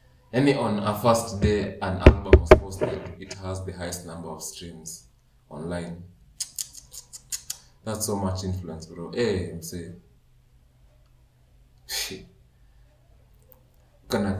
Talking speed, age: 115 wpm, 20-39